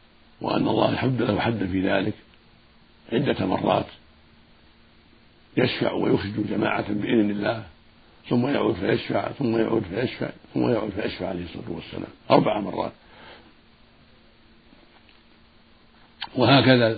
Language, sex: Arabic, male